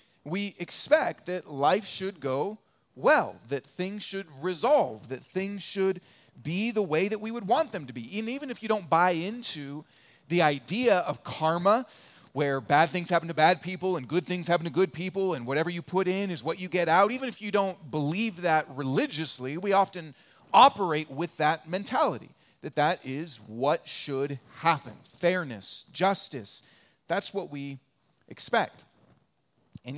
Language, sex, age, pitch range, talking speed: English, male, 40-59, 145-200 Hz, 170 wpm